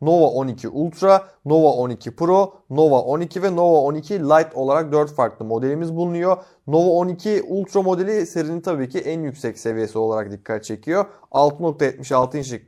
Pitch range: 130-165 Hz